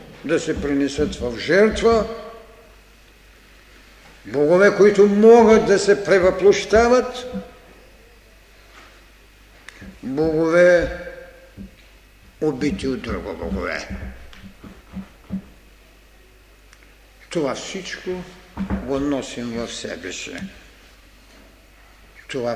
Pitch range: 120-190 Hz